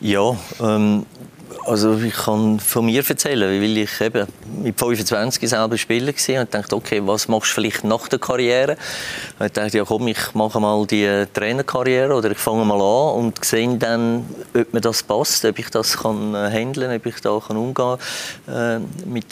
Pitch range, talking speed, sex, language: 100-115 Hz, 185 wpm, male, German